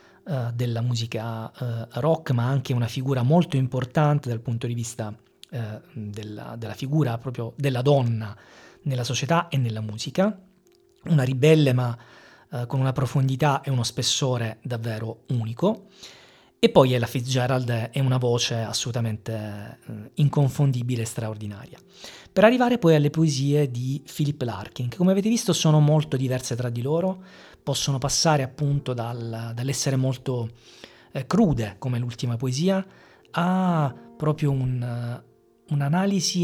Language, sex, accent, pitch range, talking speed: Italian, male, native, 120-150 Hz, 130 wpm